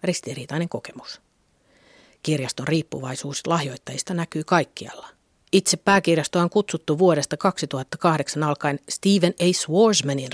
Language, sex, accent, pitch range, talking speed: Finnish, female, native, 145-195 Hz, 100 wpm